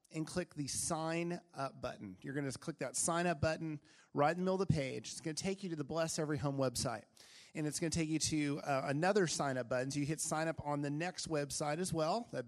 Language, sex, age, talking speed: English, male, 40-59, 270 wpm